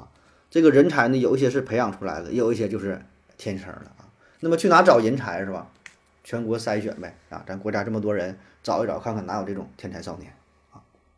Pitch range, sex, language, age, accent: 95-120 Hz, male, Chinese, 30-49, native